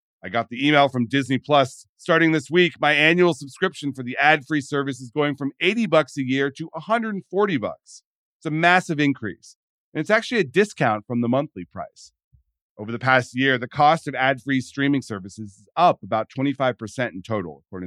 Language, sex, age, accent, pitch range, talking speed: English, male, 40-59, American, 105-150 Hz, 190 wpm